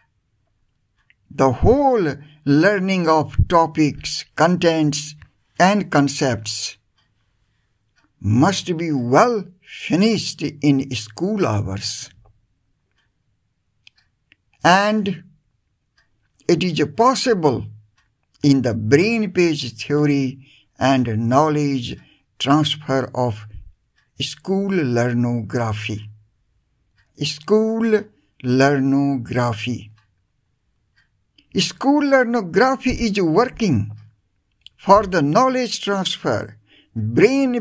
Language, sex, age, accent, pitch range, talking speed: English, male, 60-79, Indian, 110-185 Hz, 65 wpm